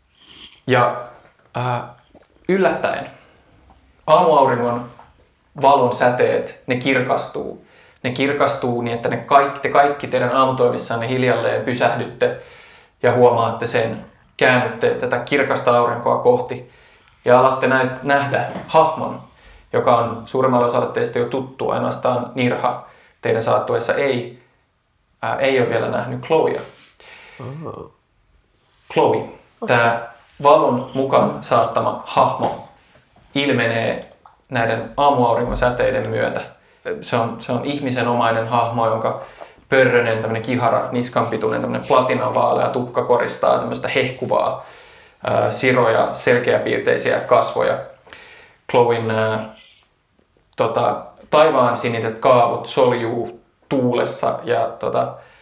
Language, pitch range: Finnish, 115-140 Hz